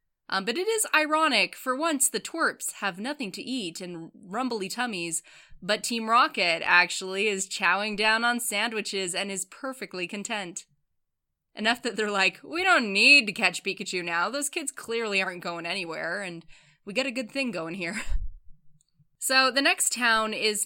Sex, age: female, 10-29